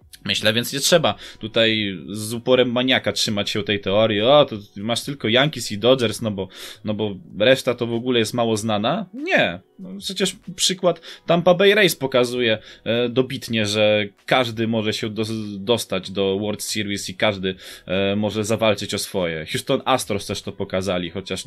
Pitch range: 105-145 Hz